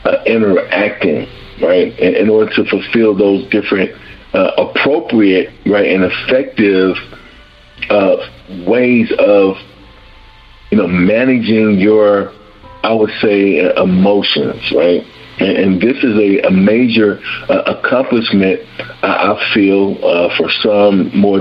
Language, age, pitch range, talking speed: English, 50-69, 95-115 Hz, 125 wpm